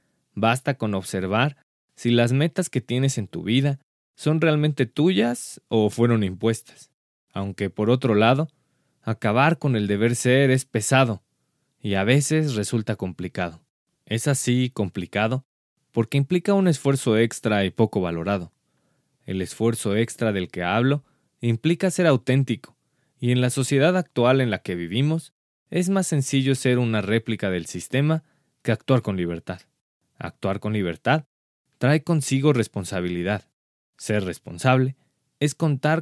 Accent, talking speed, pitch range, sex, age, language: Mexican, 140 wpm, 100-140 Hz, male, 20-39, Spanish